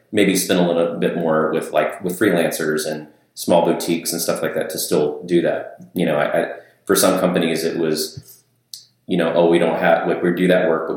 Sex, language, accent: male, English, American